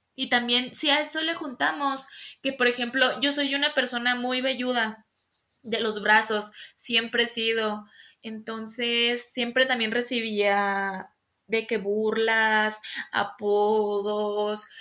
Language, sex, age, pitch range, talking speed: English, female, 20-39, 220-275 Hz, 120 wpm